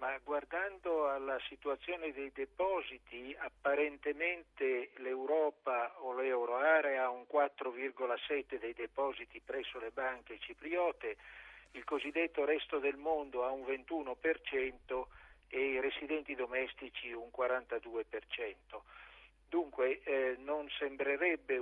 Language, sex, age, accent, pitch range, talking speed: Italian, male, 50-69, native, 125-155 Hz, 105 wpm